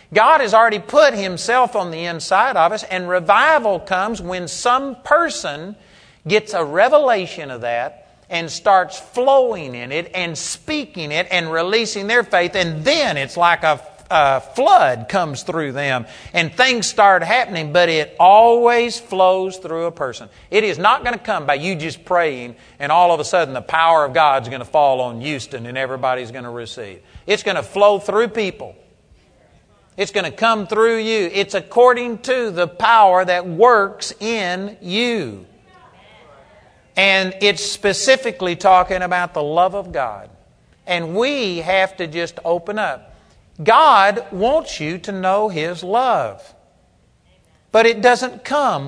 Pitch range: 155-215 Hz